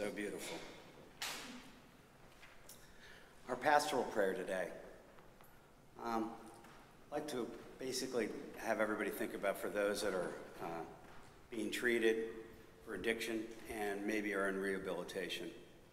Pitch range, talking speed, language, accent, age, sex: 100-115 Hz, 105 wpm, English, American, 50-69, male